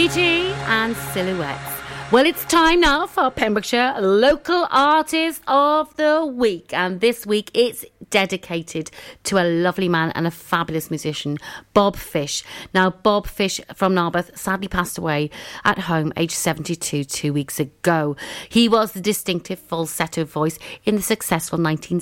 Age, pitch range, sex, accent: 40-59, 160-210 Hz, female, British